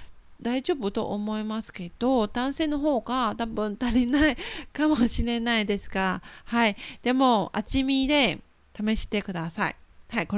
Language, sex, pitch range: Japanese, female, 205-255 Hz